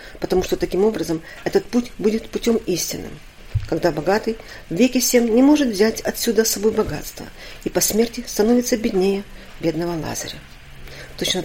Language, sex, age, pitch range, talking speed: Russian, female, 40-59, 175-230 Hz, 150 wpm